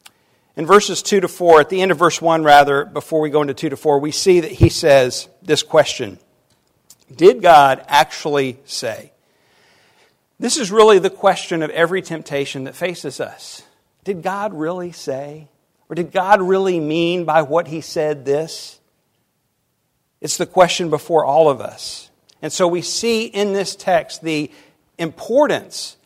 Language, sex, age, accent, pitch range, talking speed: English, male, 50-69, American, 140-185 Hz, 165 wpm